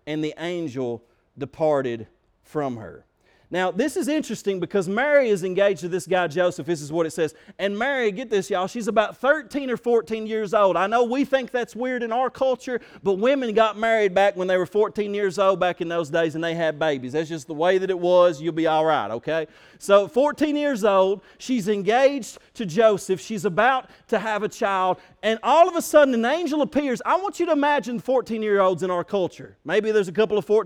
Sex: male